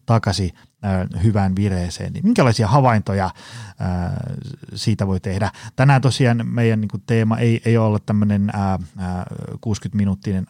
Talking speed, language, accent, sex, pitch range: 90 wpm, Finnish, native, male, 95-130 Hz